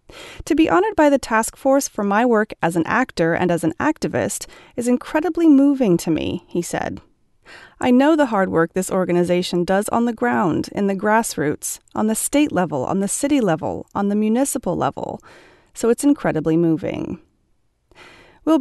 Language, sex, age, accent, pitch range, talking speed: English, female, 30-49, American, 175-285 Hz, 175 wpm